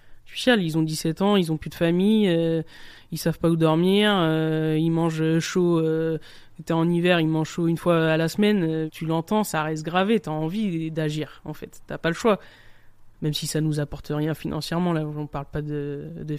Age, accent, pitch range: 20-39, French, 150-170 Hz